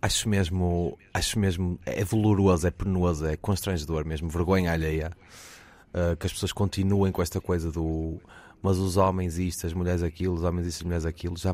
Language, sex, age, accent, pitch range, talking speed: Portuguese, male, 20-39, Portuguese, 85-95 Hz, 175 wpm